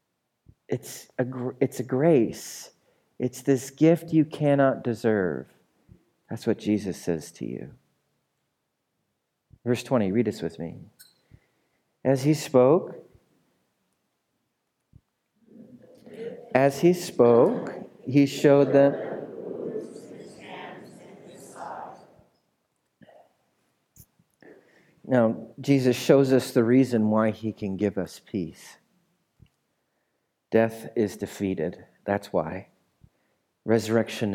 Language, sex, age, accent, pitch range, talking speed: English, male, 50-69, American, 110-160 Hz, 85 wpm